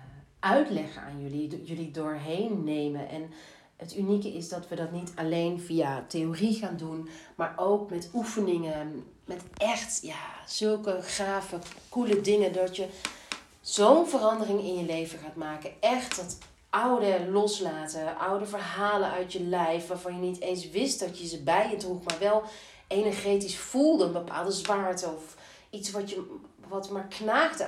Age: 40-59